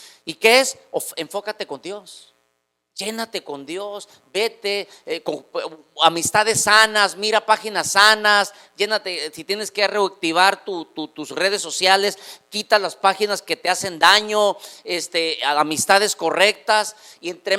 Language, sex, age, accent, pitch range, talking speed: Spanish, male, 40-59, Mexican, 160-215 Hz, 145 wpm